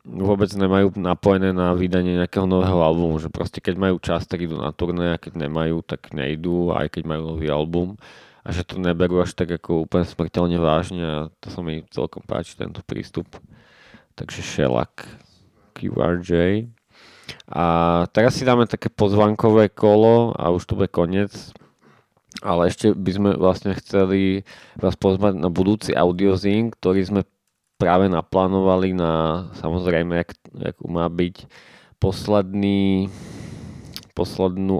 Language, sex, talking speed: Slovak, male, 140 wpm